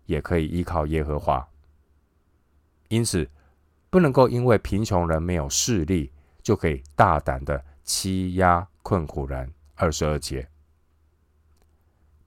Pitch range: 75-85 Hz